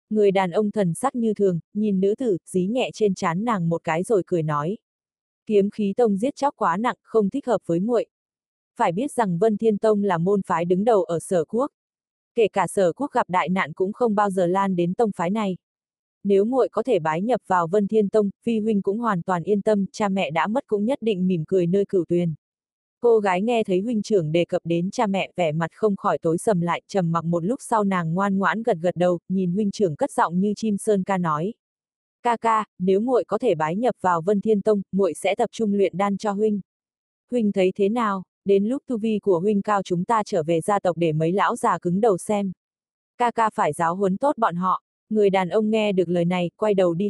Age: 20-39